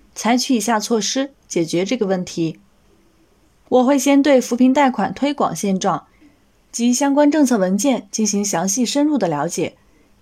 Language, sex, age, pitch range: Chinese, female, 20-39, 195-255 Hz